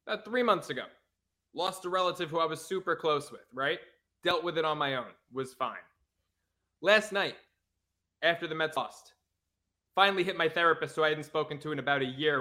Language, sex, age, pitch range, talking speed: English, male, 20-39, 140-200 Hz, 200 wpm